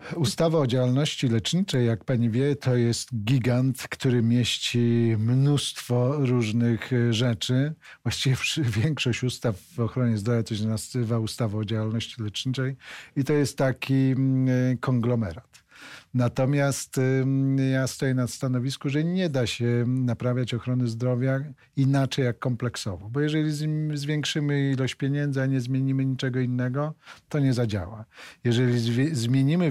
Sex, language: male, Polish